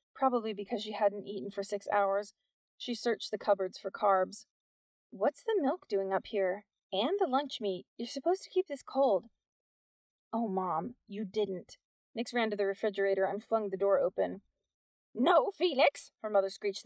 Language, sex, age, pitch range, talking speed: English, female, 30-49, 205-290 Hz, 175 wpm